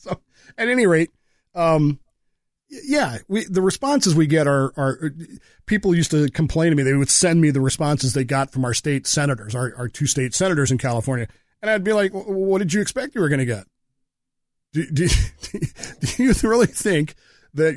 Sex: male